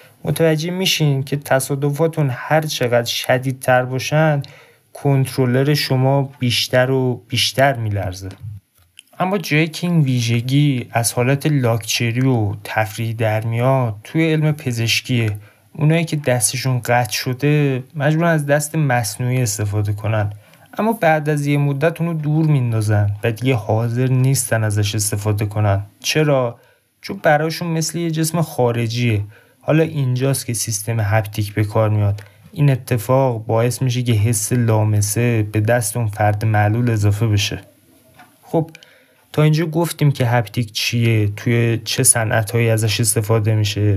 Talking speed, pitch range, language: 135 wpm, 110-145 Hz, Persian